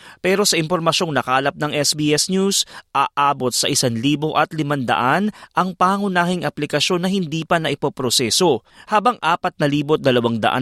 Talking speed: 115 wpm